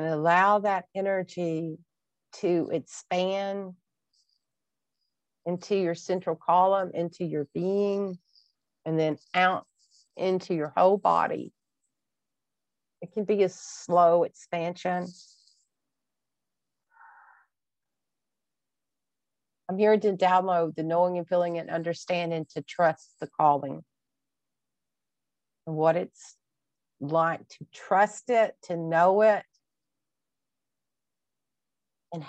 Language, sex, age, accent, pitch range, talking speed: English, female, 50-69, American, 160-185 Hz, 95 wpm